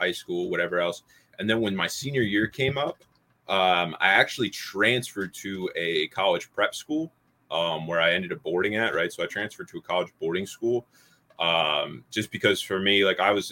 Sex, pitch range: male, 85-110 Hz